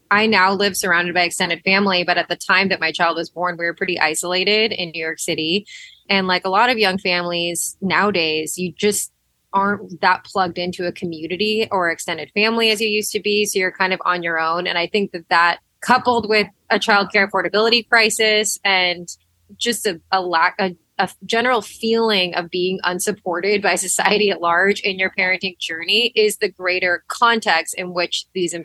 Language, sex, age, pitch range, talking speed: English, female, 20-39, 175-215 Hz, 195 wpm